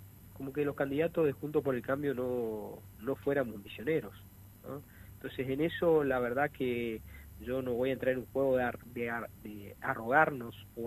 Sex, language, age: male, Spanish, 40-59